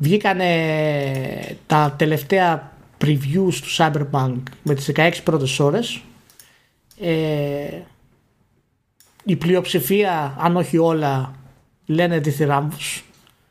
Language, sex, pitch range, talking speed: Greek, male, 140-170 Hz, 95 wpm